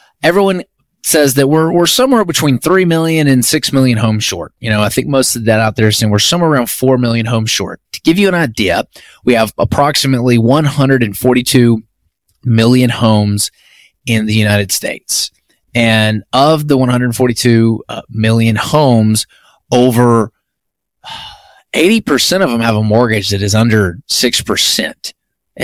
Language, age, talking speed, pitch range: English, 20-39, 150 wpm, 110-145 Hz